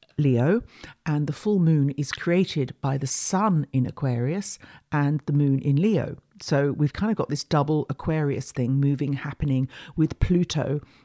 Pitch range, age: 140-165 Hz, 50-69